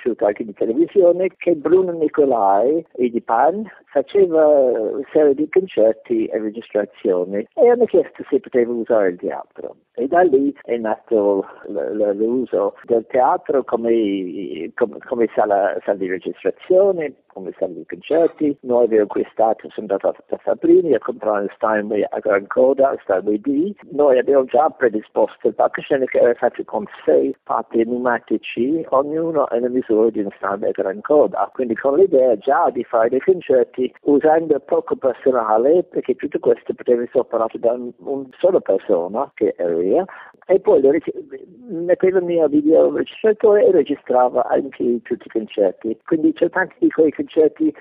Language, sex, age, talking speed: Italian, male, 50-69, 160 wpm